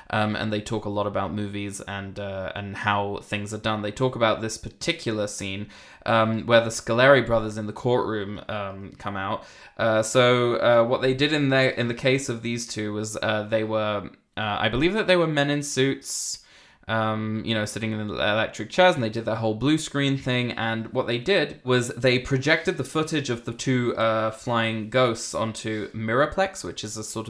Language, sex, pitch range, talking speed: English, male, 105-125 Hz, 210 wpm